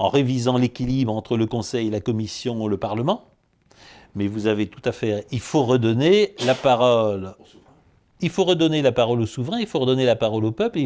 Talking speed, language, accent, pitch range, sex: 205 wpm, French, French, 120-165 Hz, male